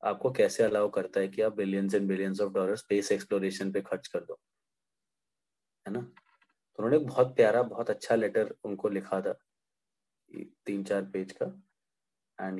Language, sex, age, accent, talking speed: Hindi, male, 20-39, native, 165 wpm